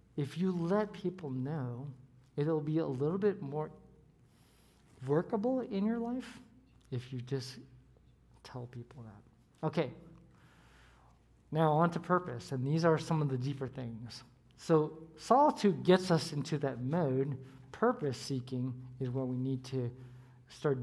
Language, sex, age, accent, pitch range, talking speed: English, male, 50-69, American, 125-165 Hz, 140 wpm